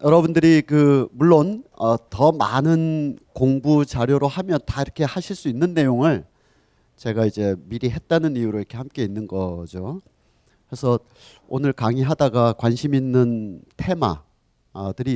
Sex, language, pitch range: male, Korean, 105-140 Hz